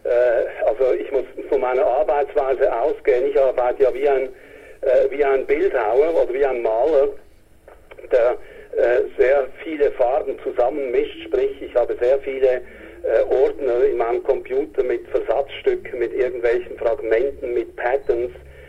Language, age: German, 60-79